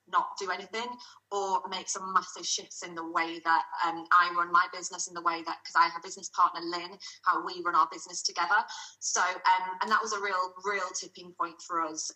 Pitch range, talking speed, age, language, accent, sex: 175-200 Hz, 220 wpm, 30-49, English, British, female